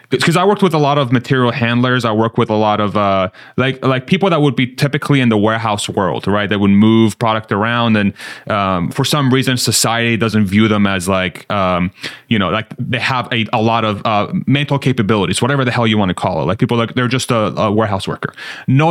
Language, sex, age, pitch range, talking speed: English, male, 30-49, 105-140 Hz, 240 wpm